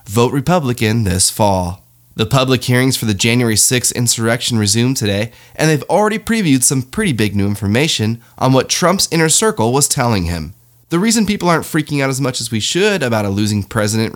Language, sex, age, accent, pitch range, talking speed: English, male, 20-39, American, 110-145 Hz, 195 wpm